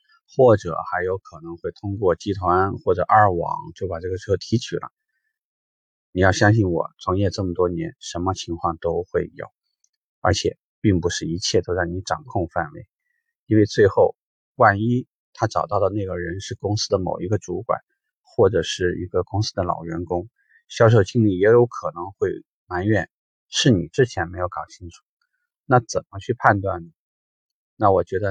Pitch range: 90-135 Hz